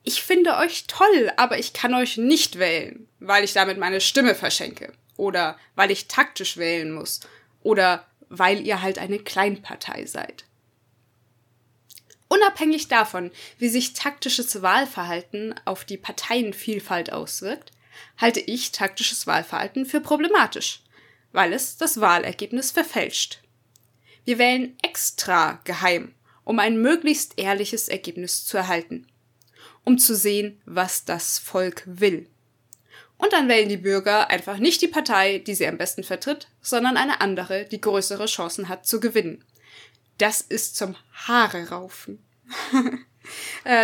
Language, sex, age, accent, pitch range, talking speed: German, female, 20-39, German, 185-250 Hz, 135 wpm